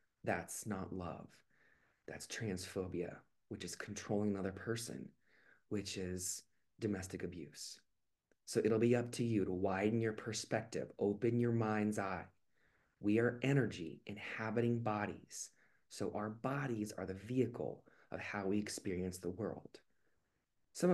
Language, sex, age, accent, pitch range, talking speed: English, male, 30-49, American, 95-115 Hz, 130 wpm